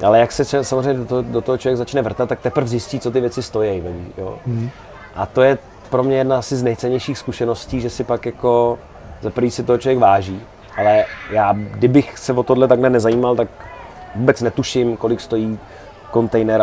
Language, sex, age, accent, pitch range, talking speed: Czech, male, 30-49, native, 110-125 Hz, 185 wpm